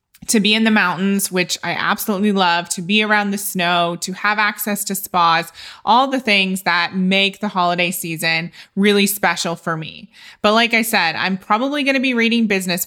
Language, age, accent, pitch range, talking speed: English, 20-39, American, 175-210 Hz, 195 wpm